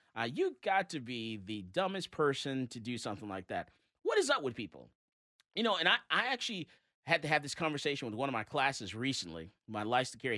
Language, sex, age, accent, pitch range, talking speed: English, male, 30-49, American, 120-180 Hz, 225 wpm